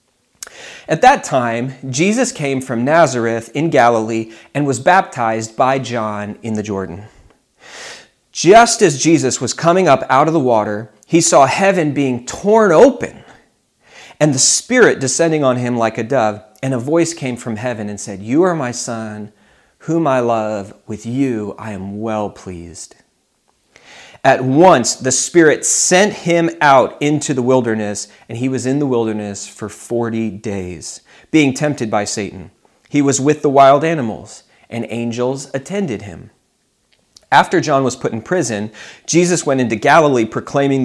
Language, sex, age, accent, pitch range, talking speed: English, male, 40-59, American, 115-150 Hz, 155 wpm